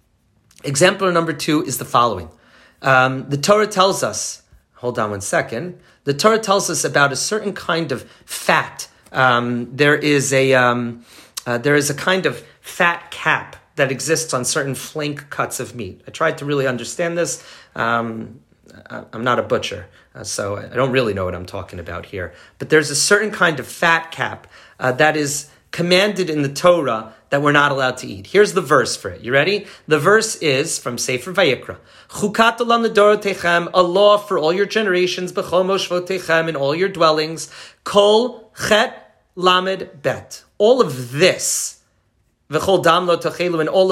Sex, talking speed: male, 180 wpm